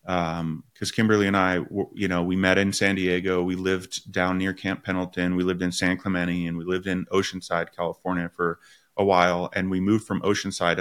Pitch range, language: 90-105 Hz, English